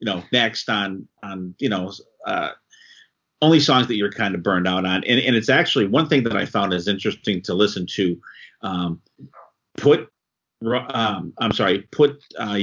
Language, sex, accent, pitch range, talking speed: English, male, American, 95-125 Hz, 180 wpm